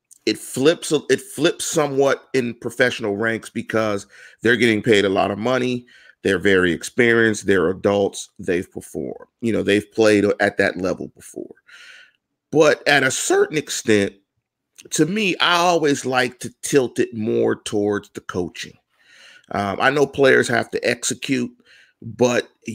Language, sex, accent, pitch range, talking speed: English, male, American, 110-145 Hz, 150 wpm